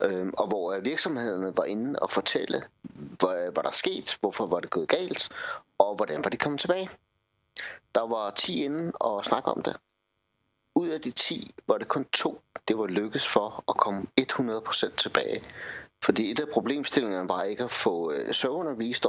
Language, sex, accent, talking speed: Danish, male, native, 170 wpm